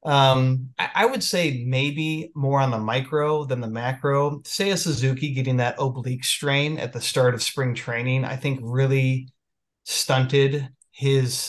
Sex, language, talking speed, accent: male, English, 155 wpm, American